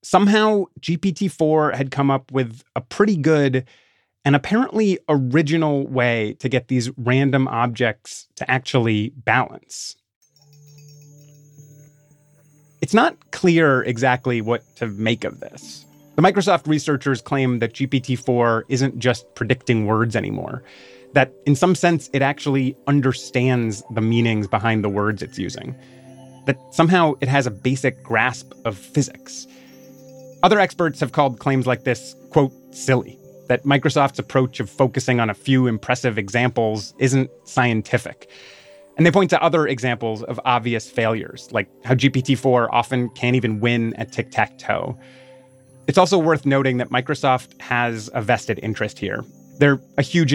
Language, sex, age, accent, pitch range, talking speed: English, male, 30-49, American, 120-145 Hz, 140 wpm